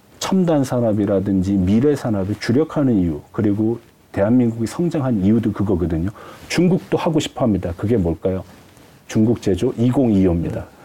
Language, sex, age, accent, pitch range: Korean, male, 40-59, native, 100-140 Hz